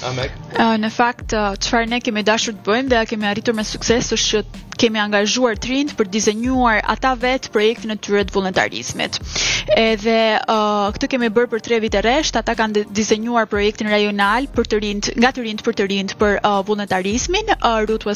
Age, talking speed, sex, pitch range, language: 20-39, 180 wpm, female, 210-250 Hz, English